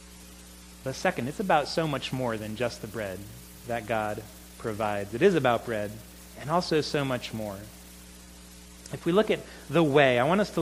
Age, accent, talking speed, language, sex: 30-49, American, 185 wpm, English, male